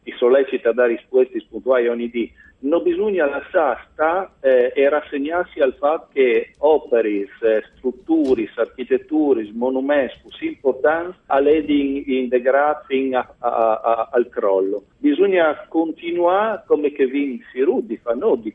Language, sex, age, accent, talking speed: Italian, male, 50-69, native, 120 wpm